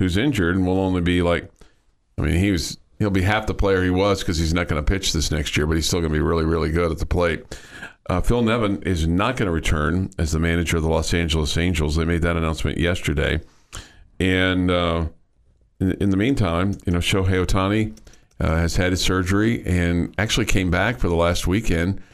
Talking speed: 220 wpm